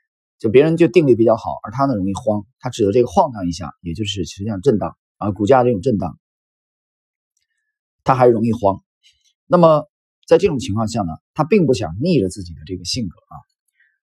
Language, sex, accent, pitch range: Chinese, male, native, 105-165 Hz